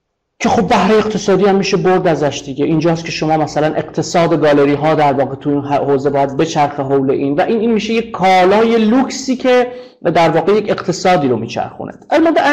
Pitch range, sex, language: 145-210 Hz, male, Persian